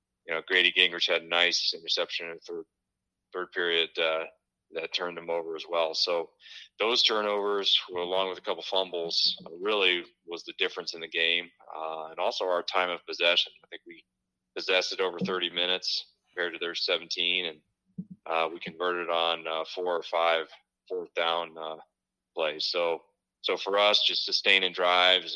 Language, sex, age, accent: English, male, 30-49, American